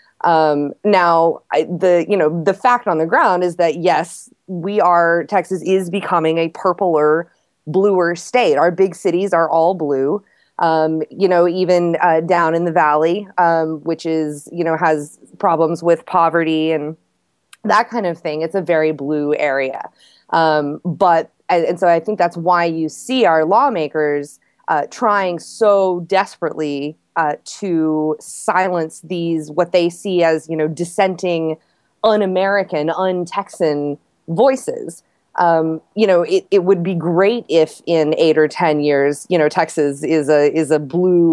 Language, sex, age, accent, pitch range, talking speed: English, female, 20-39, American, 155-185 Hz, 160 wpm